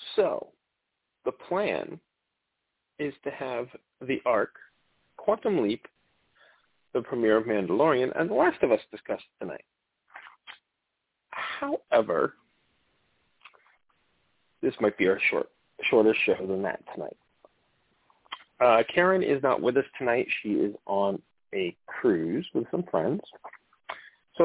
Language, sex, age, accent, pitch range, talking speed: English, male, 40-59, American, 120-150 Hz, 115 wpm